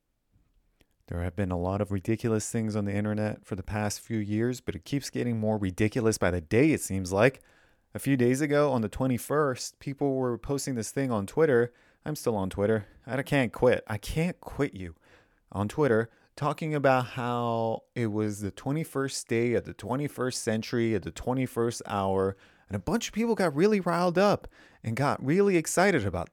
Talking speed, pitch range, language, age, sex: 195 wpm, 105-145 Hz, English, 30-49, male